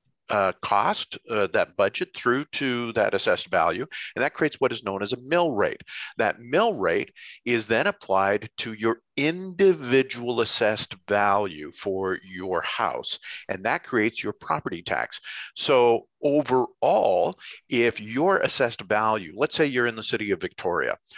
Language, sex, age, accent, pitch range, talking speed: English, male, 50-69, American, 105-145 Hz, 155 wpm